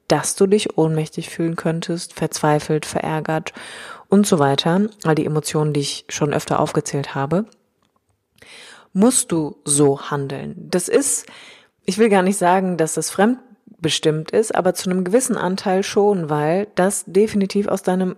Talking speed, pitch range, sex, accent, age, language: 150 wpm, 155-195 Hz, female, German, 30-49, German